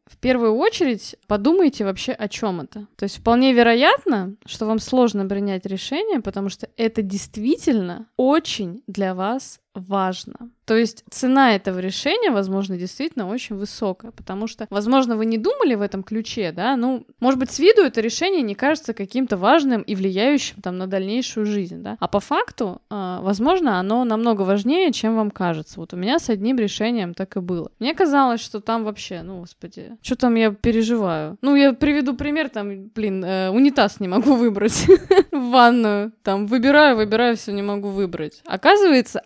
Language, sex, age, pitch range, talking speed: Russian, female, 20-39, 195-255 Hz, 175 wpm